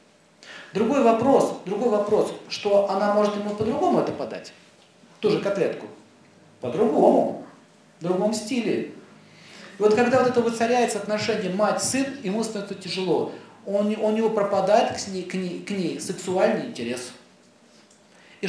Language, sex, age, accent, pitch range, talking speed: Russian, male, 40-59, native, 180-235 Hz, 145 wpm